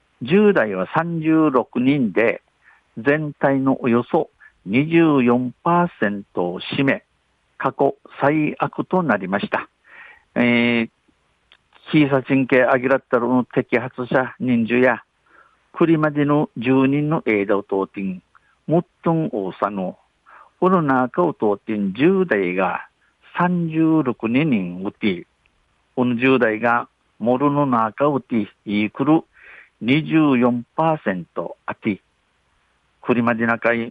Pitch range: 115-160 Hz